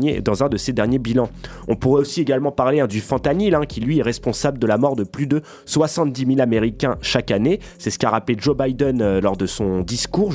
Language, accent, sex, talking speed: French, French, male, 240 wpm